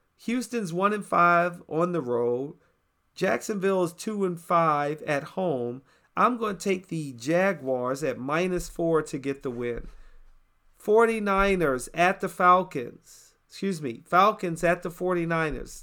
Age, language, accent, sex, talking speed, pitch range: 40-59, English, American, male, 125 wpm, 155-200 Hz